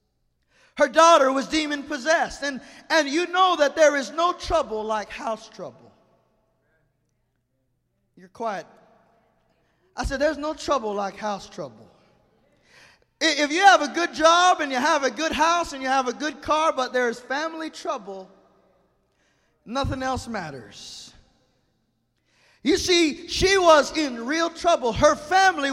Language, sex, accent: English, male, American